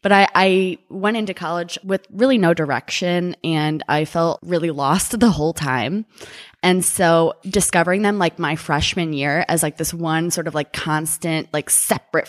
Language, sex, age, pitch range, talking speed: English, female, 20-39, 155-185 Hz, 175 wpm